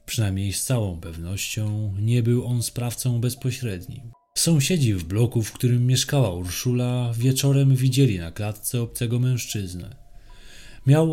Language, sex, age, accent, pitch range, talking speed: Polish, male, 20-39, native, 95-125 Hz, 125 wpm